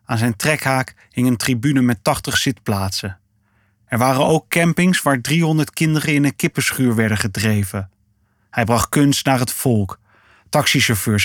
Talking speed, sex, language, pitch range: 150 wpm, male, Dutch, 110-145 Hz